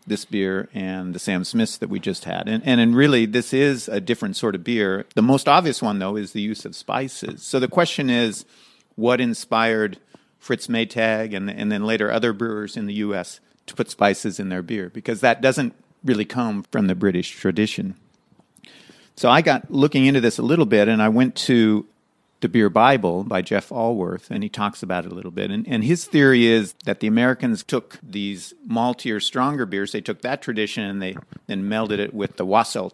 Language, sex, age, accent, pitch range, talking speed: English, male, 50-69, American, 100-125 Hz, 210 wpm